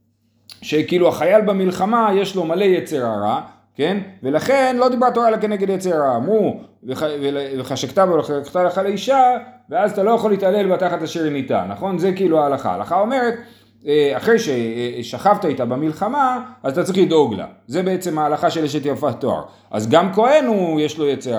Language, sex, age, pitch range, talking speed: Hebrew, male, 30-49, 130-200 Hz, 165 wpm